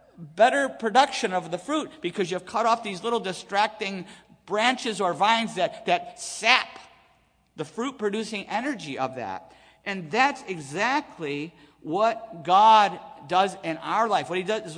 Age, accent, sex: 50-69, American, male